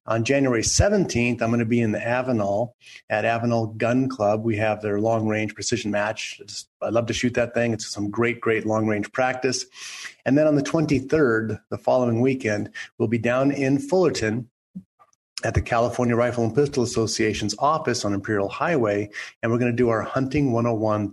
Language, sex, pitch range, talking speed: English, male, 110-135 Hz, 180 wpm